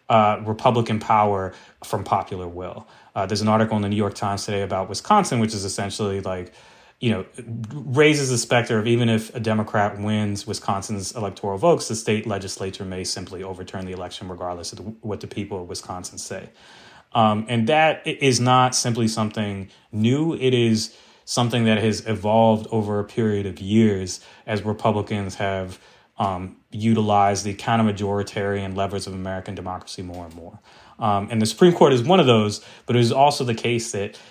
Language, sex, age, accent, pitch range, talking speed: English, male, 30-49, American, 100-115 Hz, 175 wpm